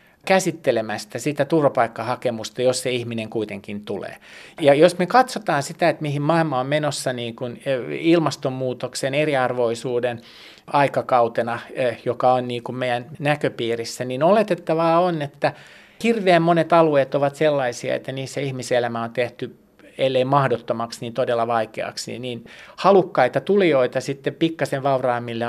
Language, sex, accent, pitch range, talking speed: Finnish, male, native, 120-155 Hz, 120 wpm